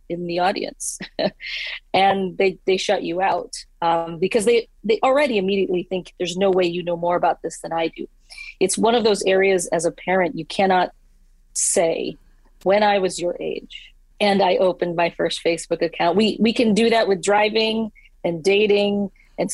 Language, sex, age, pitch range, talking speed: English, female, 40-59, 170-205 Hz, 185 wpm